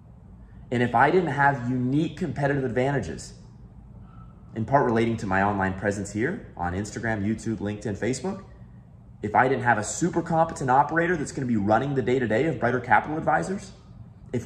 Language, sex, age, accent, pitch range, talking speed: English, male, 30-49, American, 115-160 Hz, 170 wpm